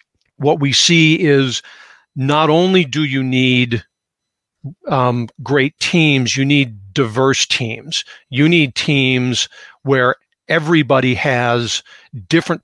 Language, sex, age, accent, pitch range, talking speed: English, male, 50-69, American, 125-155 Hz, 110 wpm